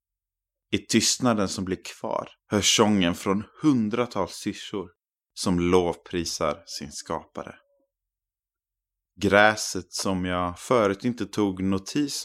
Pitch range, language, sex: 85-100 Hz, Swedish, male